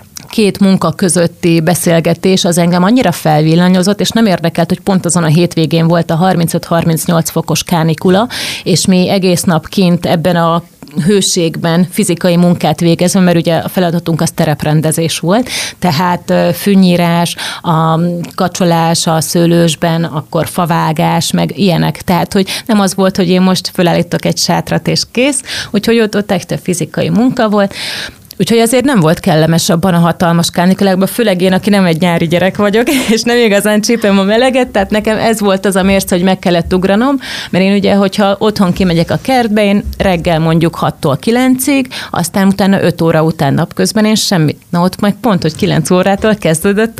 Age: 30-49